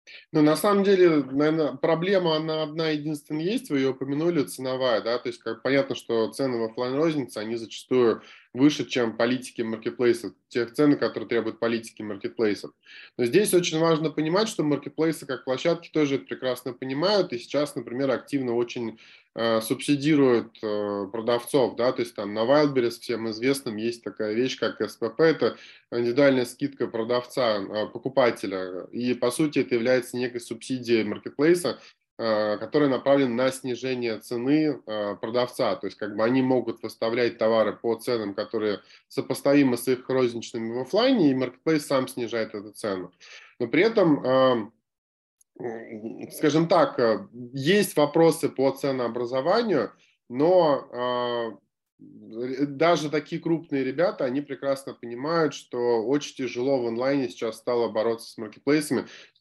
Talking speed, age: 135 wpm, 20-39